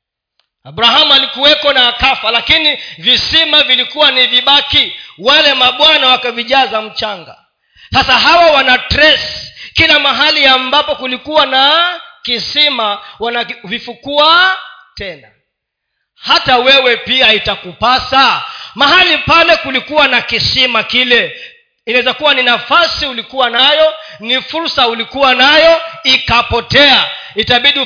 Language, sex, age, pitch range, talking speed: Swahili, male, 40-59, 235-295 Hz, 100 wpm